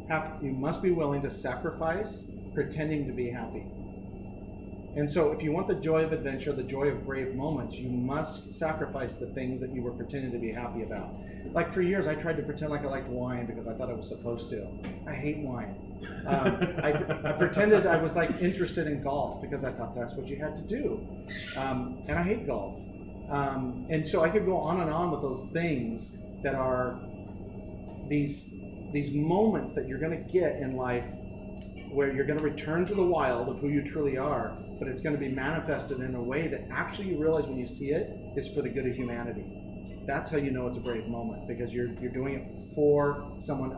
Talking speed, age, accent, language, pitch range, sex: 210 wpm, 40-59, American, English, 115-150 Hz, male